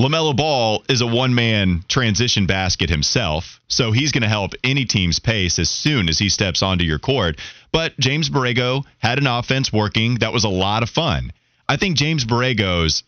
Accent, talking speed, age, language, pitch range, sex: American, 190 wpm, 30-49, English, 100-135 Hz, male